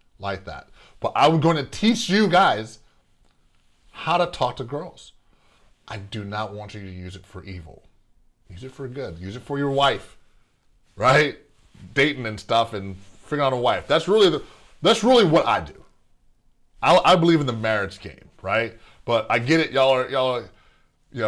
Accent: American